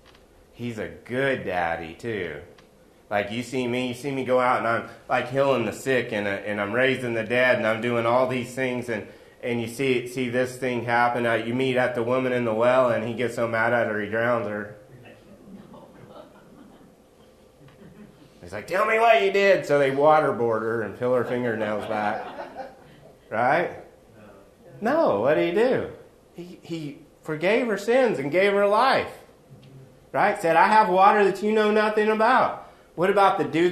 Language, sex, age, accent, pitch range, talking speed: English, male, 30-49, American, 115-150 Hz, 185 wpm